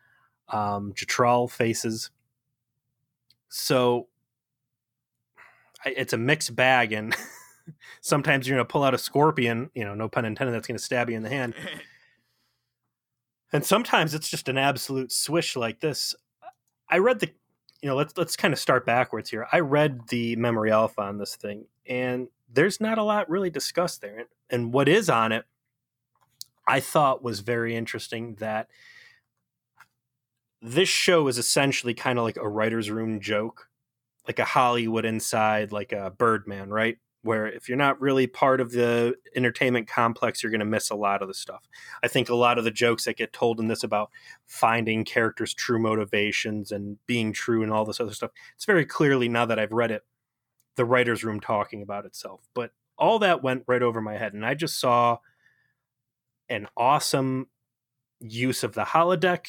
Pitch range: 115-130 Hz